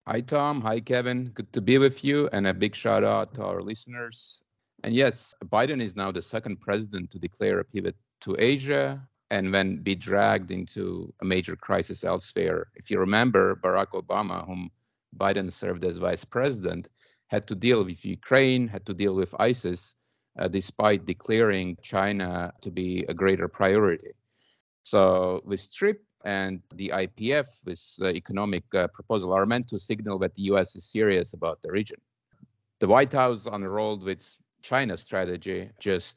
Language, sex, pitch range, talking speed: English, male, 95-120 Hz, 165 wpm